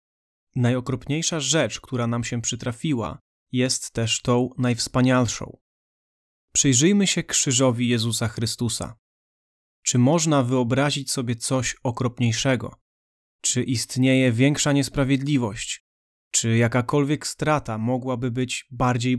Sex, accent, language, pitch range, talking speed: male, native, Polish, 120-135 Hz, 95 wpm